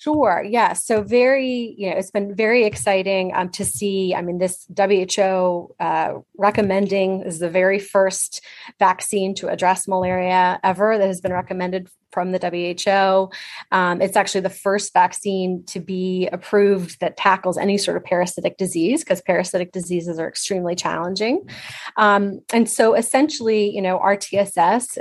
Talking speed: 155 wpm